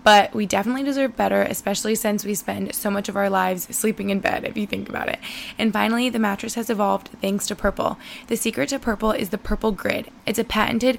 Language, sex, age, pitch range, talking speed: English, female, 20-39, 200-230 Hz, 230 wpm